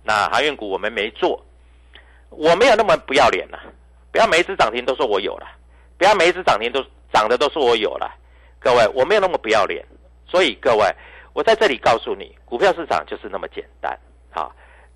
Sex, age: male, 50-69